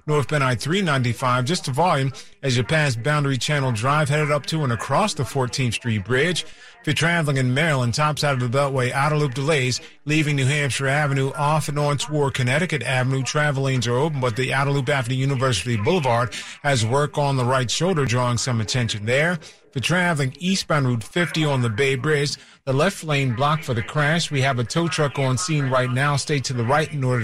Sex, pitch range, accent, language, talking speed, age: male, 130-155 Hz, American, English, 205 wpm, 30-49